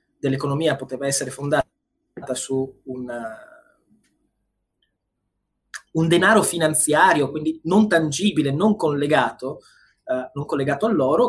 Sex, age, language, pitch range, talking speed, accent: male, 20-39, Italian, 135-185 Hz, 100 wpm, native